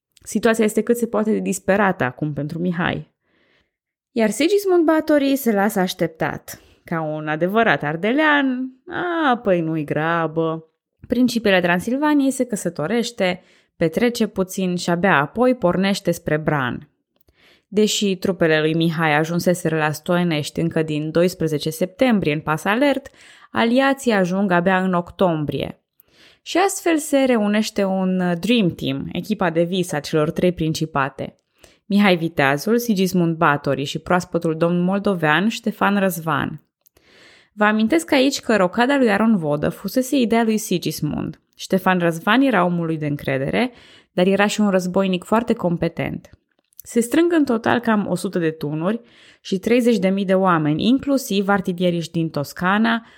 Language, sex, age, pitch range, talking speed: Romanian, female, 20-39, 165-230 Hz, 135 wpm